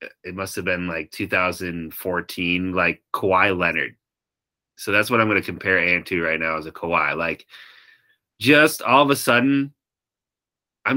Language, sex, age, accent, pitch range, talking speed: English, male, 30-49, American, 100-120 Hz, 165 wpm